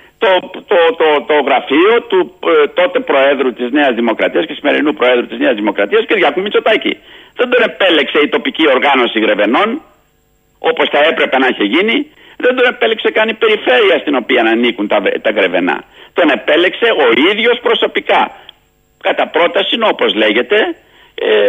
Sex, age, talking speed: male, 60-79, 155 wpm